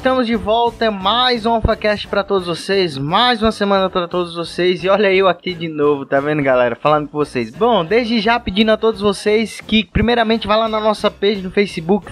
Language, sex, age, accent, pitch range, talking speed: Portuguese, male, 20-39, Brazilian, 160-210 Hz, 220 wpm